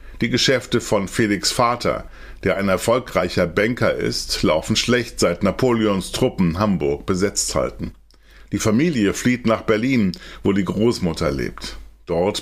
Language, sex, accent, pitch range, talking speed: German, male, German, 90-120 Hz, 135 wpm